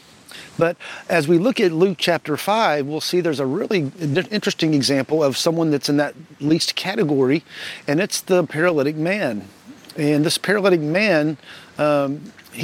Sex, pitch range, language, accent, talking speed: male, 140-180 Hz, English, American, 150 wpm